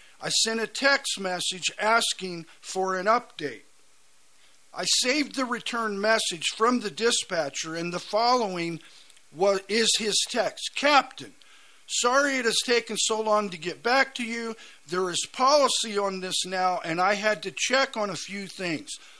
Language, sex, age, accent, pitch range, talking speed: English, male, 50-69, American, 175-230 Hz, 155 wpm